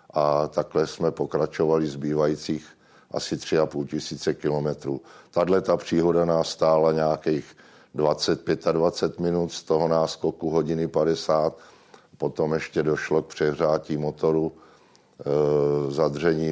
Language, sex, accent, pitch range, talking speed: Czech, male, native, 75-80 Hz, 125 wpm